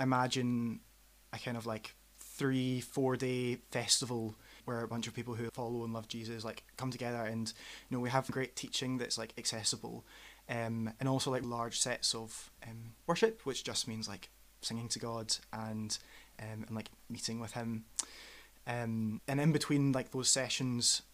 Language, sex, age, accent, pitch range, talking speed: English, male, 20-39, British, 115-130 Hz, 175 wpm